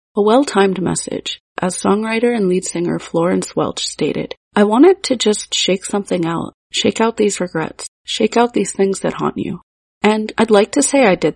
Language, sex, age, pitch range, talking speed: English, female, 30-49, 185-215 Hz, 190 wpm